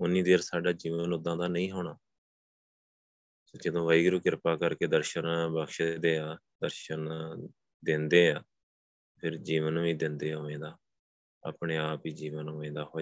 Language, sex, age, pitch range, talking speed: Punjabi, male, 20-39, 75-85 Hz, 145 wpm